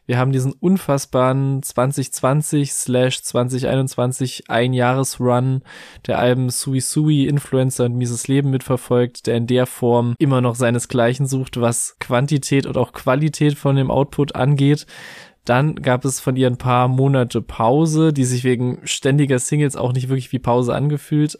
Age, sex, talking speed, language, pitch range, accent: 20-39, male, 150 wpm, German, 120-135 Hz, German